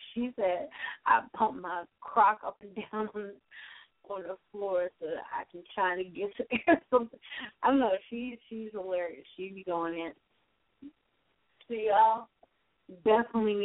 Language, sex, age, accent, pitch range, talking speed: English, female, 30-49, American, 180-215 Hz, 155 wpm